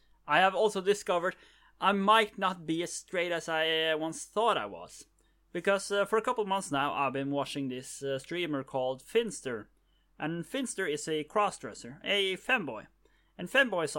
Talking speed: 175 wpm